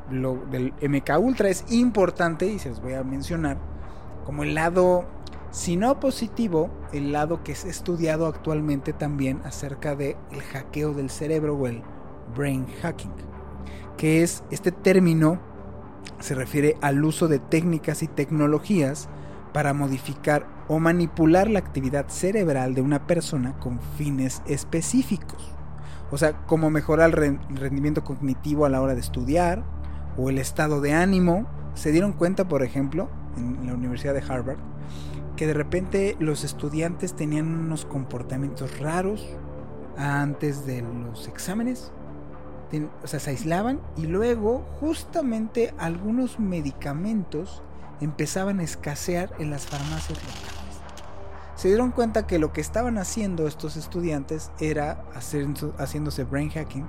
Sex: male